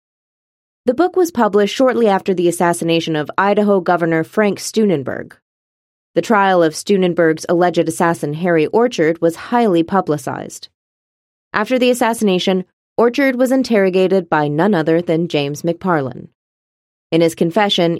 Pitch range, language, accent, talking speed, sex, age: 160-215 Hz, English, American, 130 wpm, female, 30-49